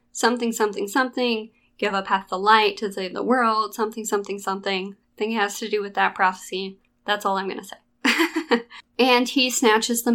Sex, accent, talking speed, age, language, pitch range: female, American, 185 wpm, 20-39, English, 195-245 Hz